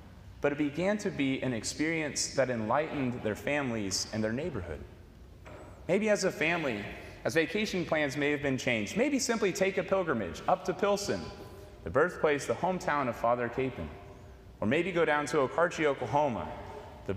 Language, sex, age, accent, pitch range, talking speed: English, male, 30-49, American, 115-180 Hz, 170 wpm